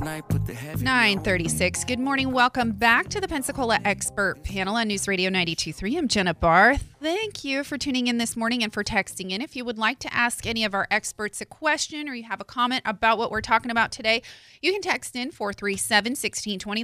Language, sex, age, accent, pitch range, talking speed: English, female, 30-49, American, 200-250 Hz, 205 wpm